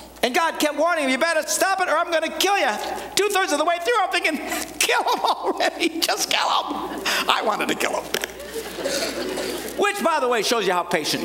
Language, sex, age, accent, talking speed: English, male, 50-69, American, 220 wpm